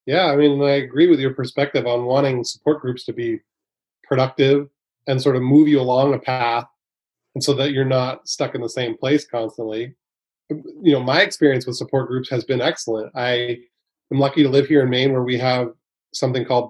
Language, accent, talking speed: English, American, 200 wpm